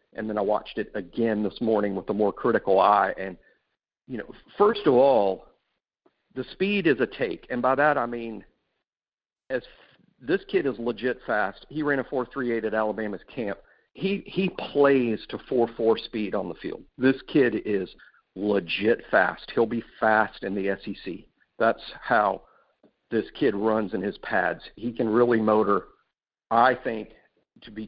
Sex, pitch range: male, 110-135 Hz